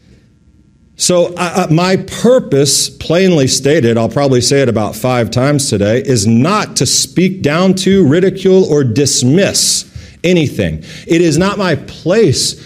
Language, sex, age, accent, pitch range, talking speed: English, male, 40-59, American, 115-170 Hz, 135 wpm